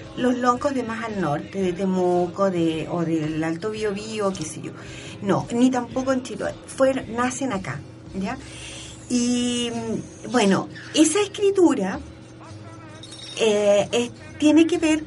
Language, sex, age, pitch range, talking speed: Spanish, female, 40-59, 170-250 Hz, 140 wpm